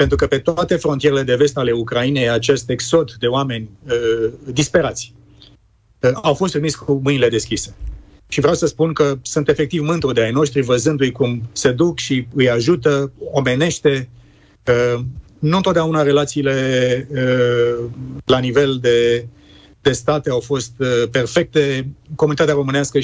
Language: Romanian